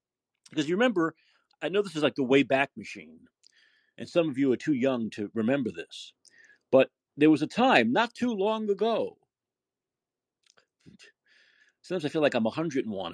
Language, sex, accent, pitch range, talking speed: English, male, American, 120-185 Hz, 165 wpm